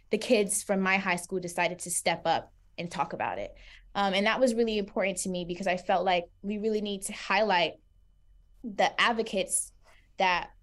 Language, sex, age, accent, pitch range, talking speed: English, female, 20-39, American, 180-210 Hz, 190 wpm